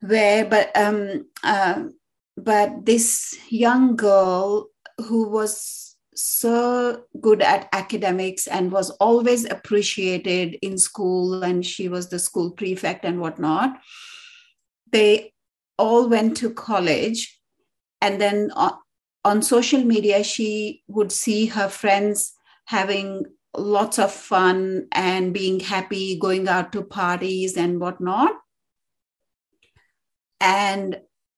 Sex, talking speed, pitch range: female, 110 wpm, 190-230 Hz